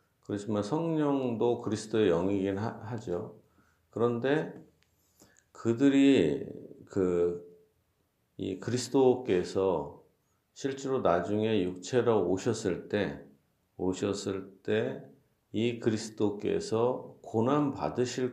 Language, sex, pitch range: Korean, male, 90-125 Hz